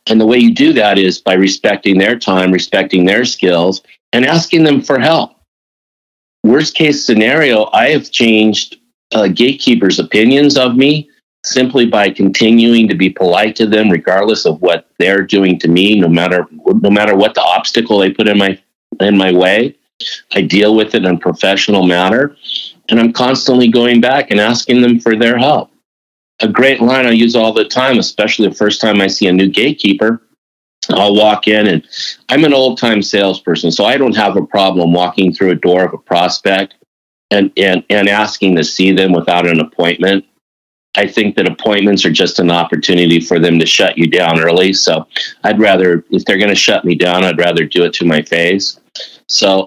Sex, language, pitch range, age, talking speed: male, English, 90-115 Hz, 50-69, 195 wpm